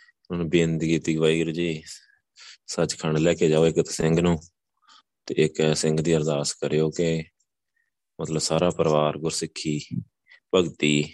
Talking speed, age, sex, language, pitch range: 135 wpm, 20-39, male, Punjabi, 80-85 Hz